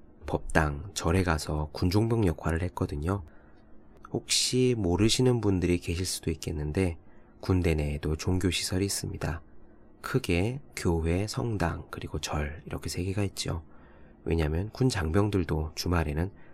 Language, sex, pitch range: Korean, male, 80-105 Hz